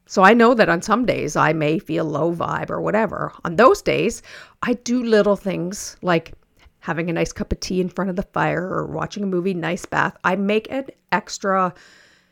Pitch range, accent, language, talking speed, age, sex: 165-220 Hz, American, English, 210 wpm, 50-69, female